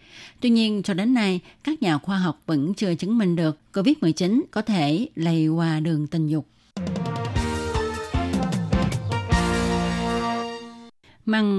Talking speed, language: 120 wpm, Vietnamese